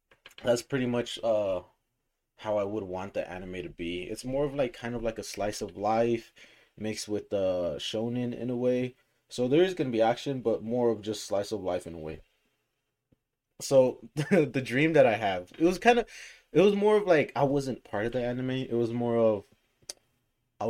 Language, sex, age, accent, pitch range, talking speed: English, male, 20-39, American, 95-130 Hz, 210 wpm